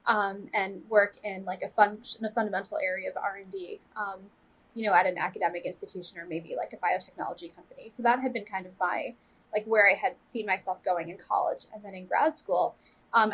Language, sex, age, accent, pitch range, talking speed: English, female, 10-29, American, 200-240 Hz, 215 wpm